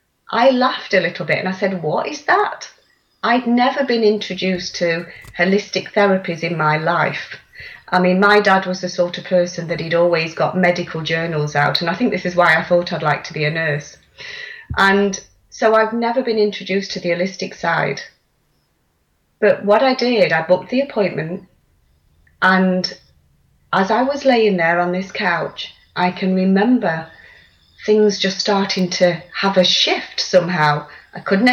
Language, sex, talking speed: English, female, 175 wpm